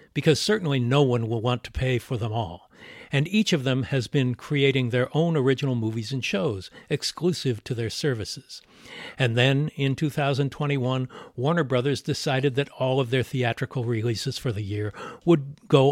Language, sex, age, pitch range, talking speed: English, male, 60-79, 115-145 Hz, 175 wpm